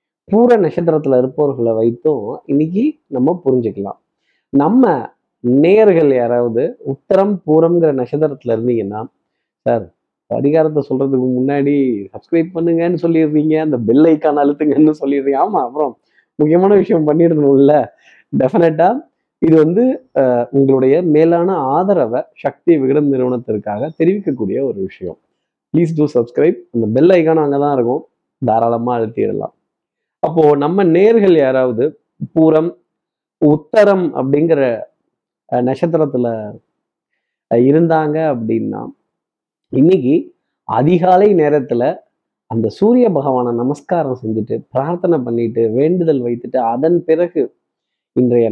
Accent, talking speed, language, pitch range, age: native, 100 wpm, Tamil, 125-165 Hz, 20-39